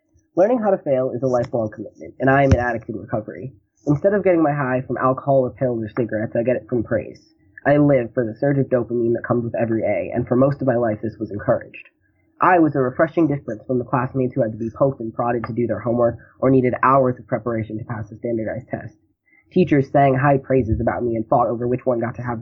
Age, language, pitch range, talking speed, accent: 20-39, English, 115-145 Hz, 255 wpm, American